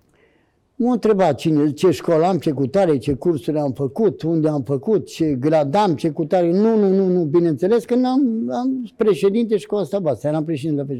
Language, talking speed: Romanian, 185 wpm